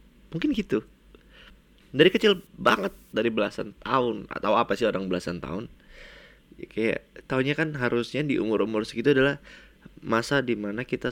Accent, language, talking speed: native, Indonesian, 140 wpm